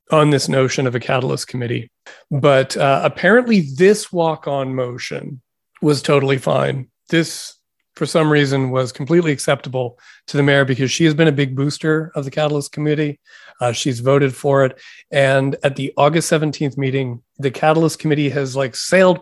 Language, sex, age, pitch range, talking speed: English, male, 40-59, 135-155 Hz, 170 wpm